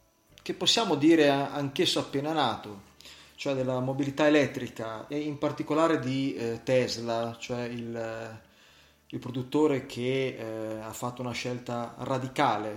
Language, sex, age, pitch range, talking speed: Italian, male, 30-49, 120-150 Hz, 120 wpm